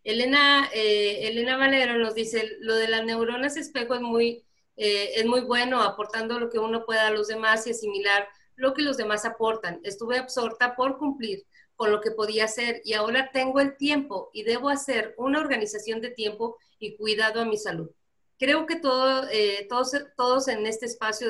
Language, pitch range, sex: Spanish, 210-250 Hz, female